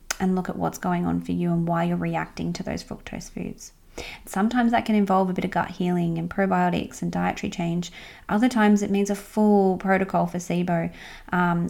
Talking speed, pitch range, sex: 205 wpm, 175-205 Hz, female